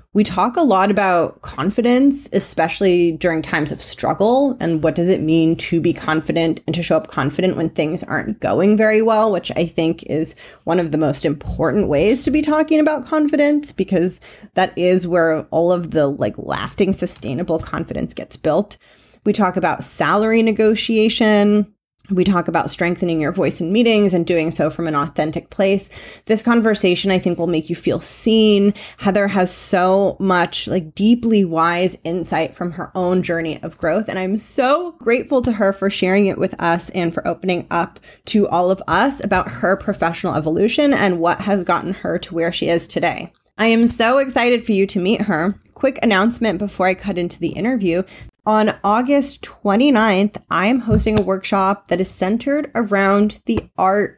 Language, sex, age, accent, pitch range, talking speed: English, female, 30-49, American, 170-215 Hz, 180 wpm